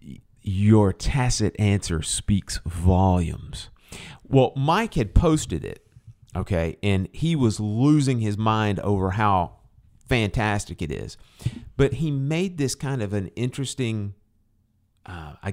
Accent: American